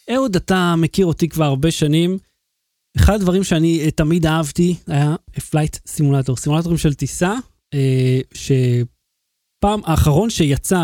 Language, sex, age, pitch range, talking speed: Hebrew, male, 30-49, 140-185 Hz, 120 wpm